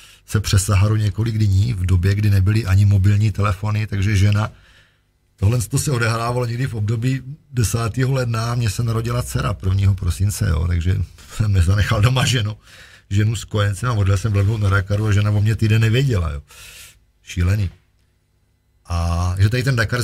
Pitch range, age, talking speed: 90-110 Hz, 40-59, 165 wpm